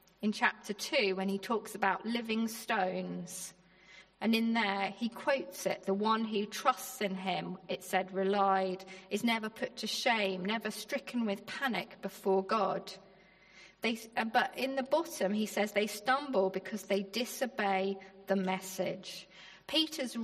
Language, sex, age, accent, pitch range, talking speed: English, female, 40-59, British, 190-230 Hz, 145 wpm